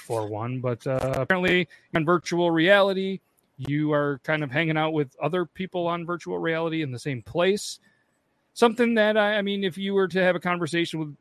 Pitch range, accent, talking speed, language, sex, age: 140-180 Hz, American, 200 wpm, English, male, 40-59